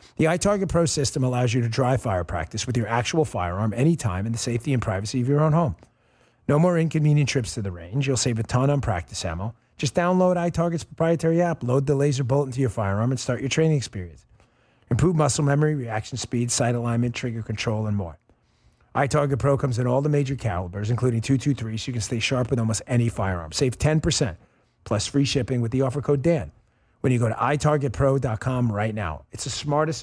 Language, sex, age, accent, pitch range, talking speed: English, male, 40-59, American, 110-150 Hz, 210 wpm